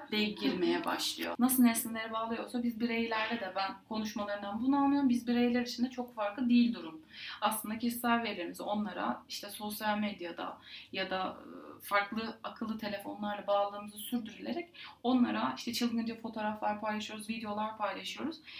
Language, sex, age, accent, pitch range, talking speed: Turkish, female, 30-49, native, 220-265 Hz, 130 wpm